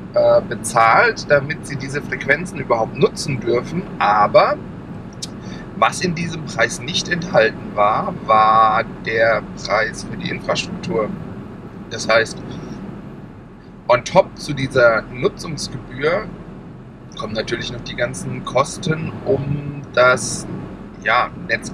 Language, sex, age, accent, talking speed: German, male, 40-59, German, 105 wpm